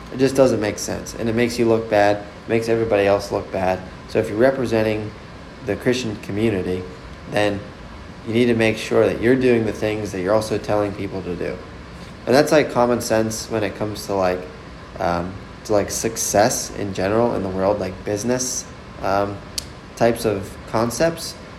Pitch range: 95-115 Hz